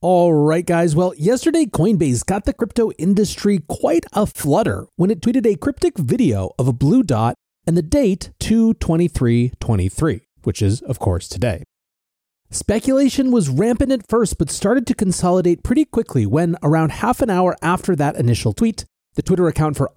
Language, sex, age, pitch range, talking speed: English, male, 30-49, 130-200 Hz, 170 wpm